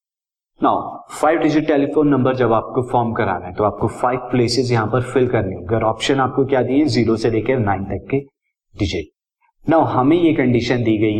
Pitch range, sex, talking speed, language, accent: 125-160 Hz, male, 190 wpm, Hindi, native